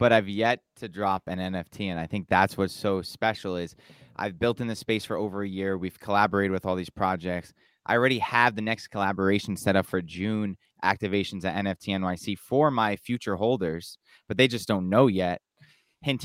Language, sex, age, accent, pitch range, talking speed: English, male, 20-39, American, 95-115 Hz, 205 wpm